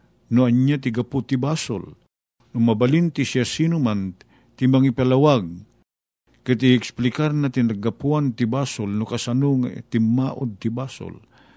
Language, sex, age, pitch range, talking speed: Filipino, male, 50-69, 120-145 Hz, 95 wpm